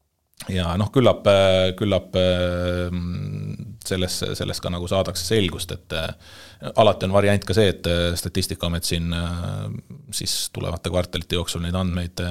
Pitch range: 85-100 Hz